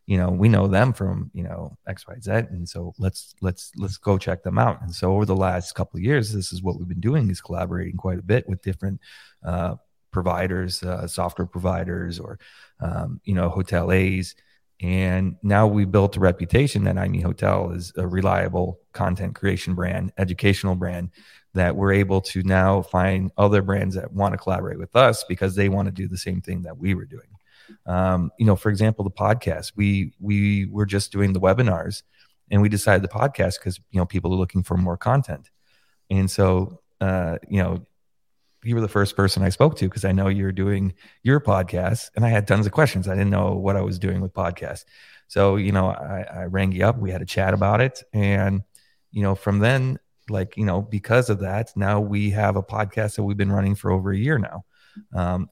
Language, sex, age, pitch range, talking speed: English, male, 30-49, 90-105 Hz, 215 wpm